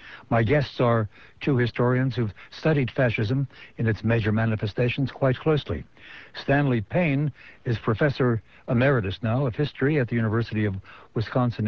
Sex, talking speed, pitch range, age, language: male, 140 wpm, 110-135 Hz, 60-79, English